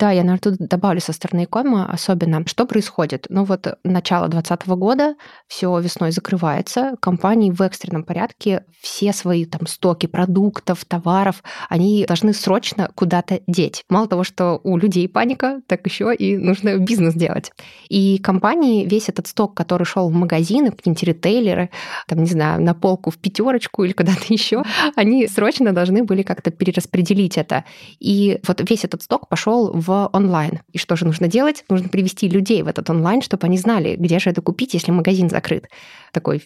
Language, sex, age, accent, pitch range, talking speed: Russian, female, 20-39, native, 175-205 Hz, 175 wpm